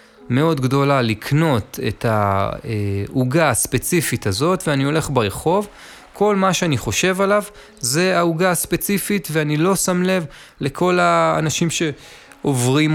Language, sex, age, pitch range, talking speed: Hebrew, male, 20-39, 120-170 Hz, 115 wpm